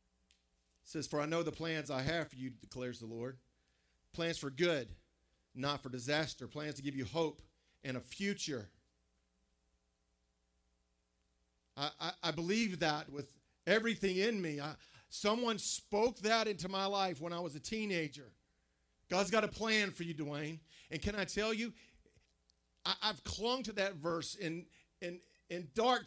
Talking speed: 160 wpm